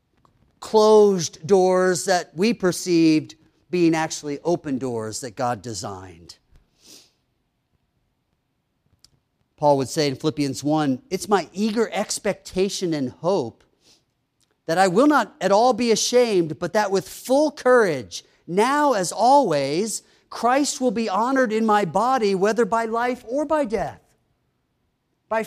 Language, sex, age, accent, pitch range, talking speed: English, male, 50-69, American, 145-215 Hz, 125 wpm